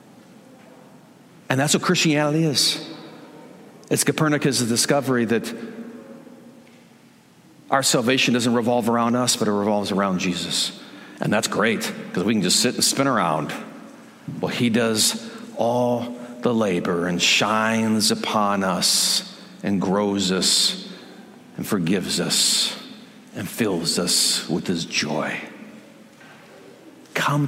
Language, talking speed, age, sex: English, 120 wpm, 50-69, male